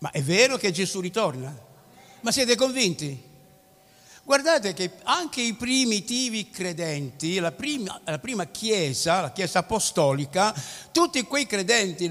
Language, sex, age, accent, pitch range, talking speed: Italian, male, 60-79, native, 185-260 Hz, 125 wpm